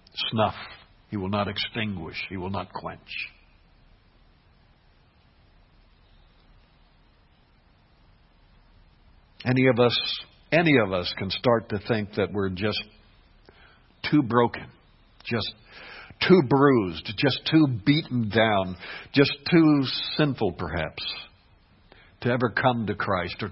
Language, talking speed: English, 105 wpm